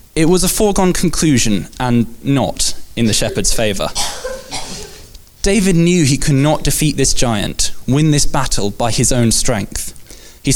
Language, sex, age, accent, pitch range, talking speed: English, male, 20-39, British, 115-155 Hz, 155 wpm